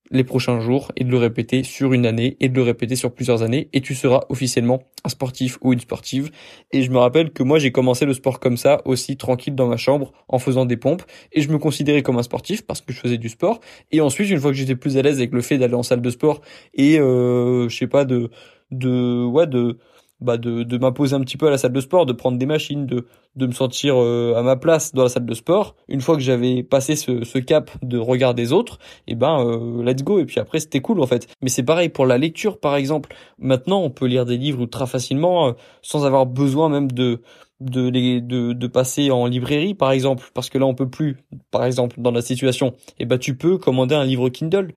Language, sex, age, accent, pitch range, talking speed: French, male, 20-39, French, 125-145 Hz, 250 wpm